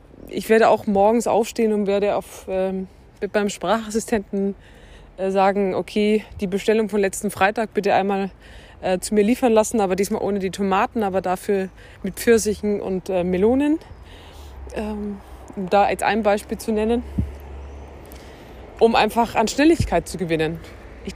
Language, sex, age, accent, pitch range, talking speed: German, female, 20-39, German, 185-220 Hz, 150 wpm